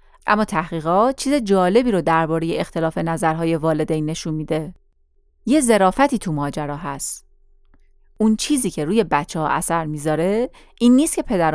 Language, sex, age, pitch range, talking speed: Persian, female, 30-49, 165-215 Hz, 145 wpm